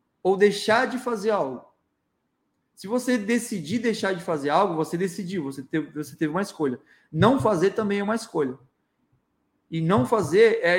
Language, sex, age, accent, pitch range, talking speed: Portuguese, male, 20-39, Brazilian, 165-210 Hz, 160 wpm